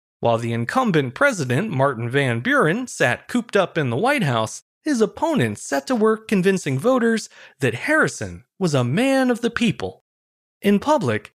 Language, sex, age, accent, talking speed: English, male, 30-49, American, 165 wpm